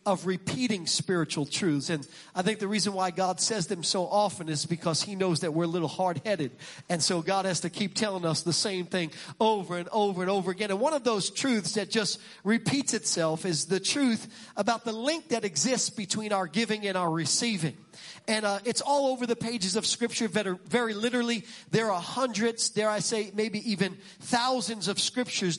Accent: American